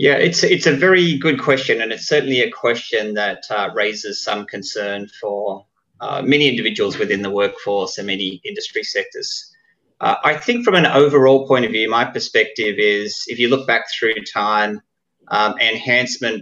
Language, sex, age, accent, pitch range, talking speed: English, male, 30-49, Australian, 110-145 Hz, 175 wpm